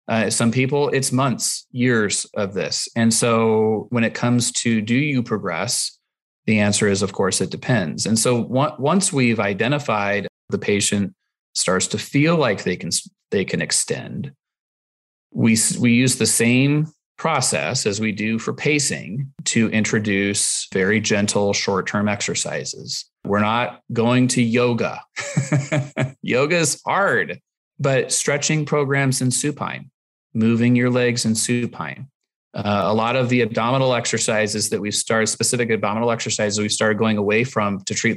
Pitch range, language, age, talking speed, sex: 105-125 Hz, English, 30-49, 150 wpm, male